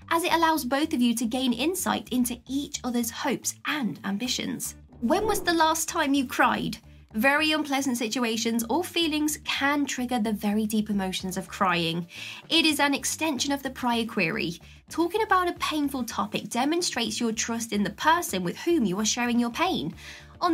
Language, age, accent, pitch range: English, 20-39, British, 220-310 Hz